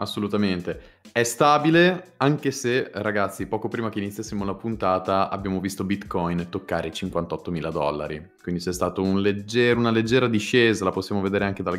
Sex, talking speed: male, 165 wpm